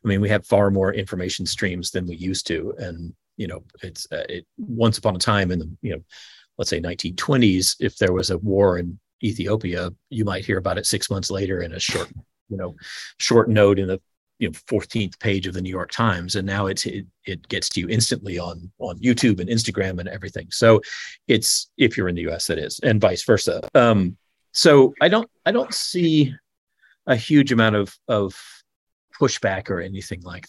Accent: American